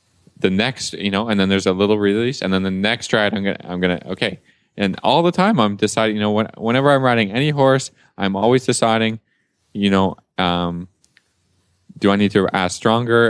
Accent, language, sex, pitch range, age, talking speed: American, English, male, 95-125 Hz, 20-39, 210 wpm